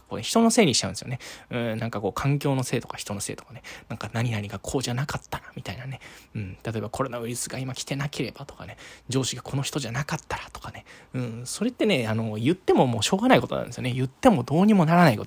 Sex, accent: male, native